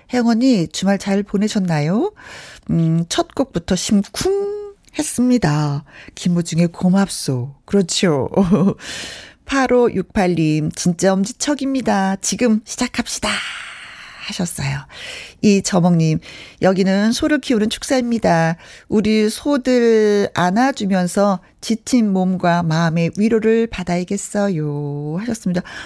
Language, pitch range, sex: Korean, 180-245 Hz, female